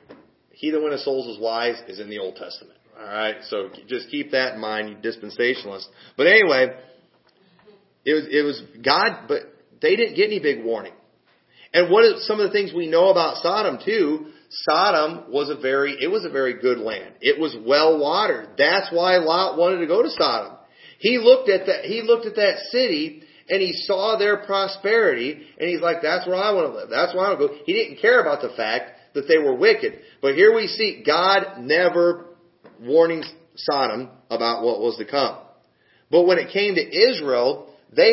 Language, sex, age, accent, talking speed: English, male, 40-59, American, 200 wpm